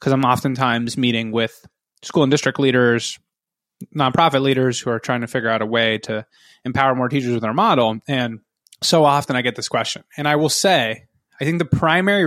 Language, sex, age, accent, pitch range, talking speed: English, male, 20-39, American, 120-155 Hz, 200 wpm